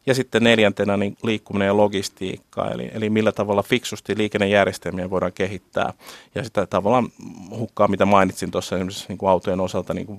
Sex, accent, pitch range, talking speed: male, native, 95-110 Hz, 170 wpm